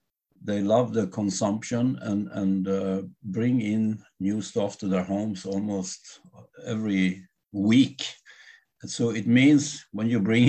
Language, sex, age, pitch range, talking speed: English, male, 60-79, 95-120 Hz, 130 wpm